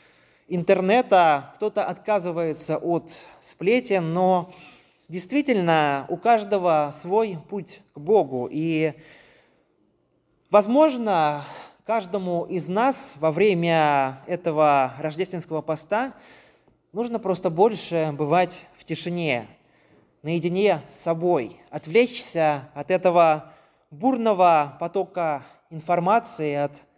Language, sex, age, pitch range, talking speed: Russian, male, 20-39, 155-205 Hz, 85 wpm